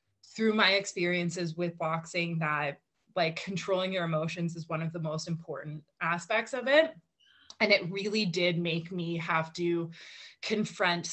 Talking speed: 150 wpm